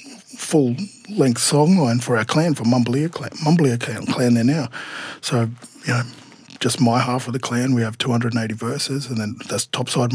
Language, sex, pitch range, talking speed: English, male, 115-140 Hz, 185 wpm